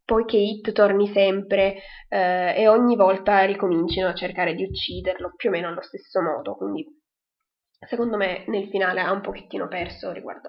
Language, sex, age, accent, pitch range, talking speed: Italian, female, 20-39, native, 190-245 Hz, 165 wpm